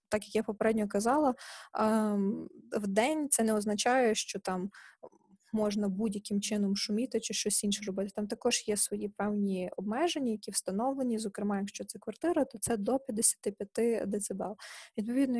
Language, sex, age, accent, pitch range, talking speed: Ukrainian, female, 20-39, native, 205-235 Hz, 150 wpm